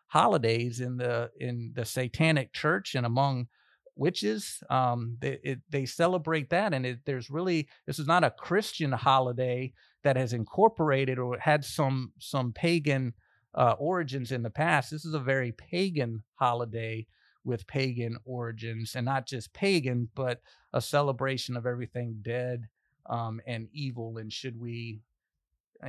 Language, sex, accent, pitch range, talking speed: English, male, American, 120-150 Hz, 150 wpm